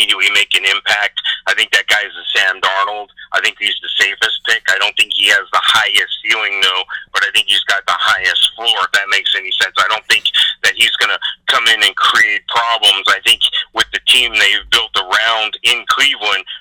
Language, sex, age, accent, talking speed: English, male, 40-59, American, 215 wpm